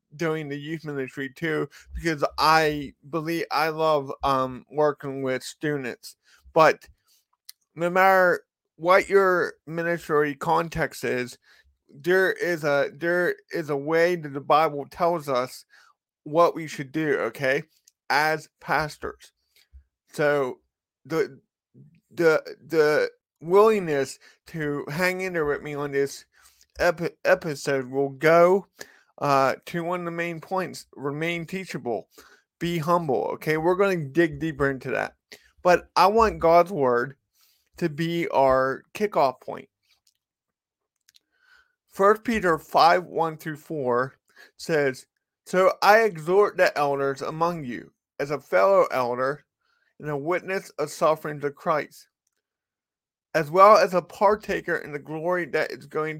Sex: male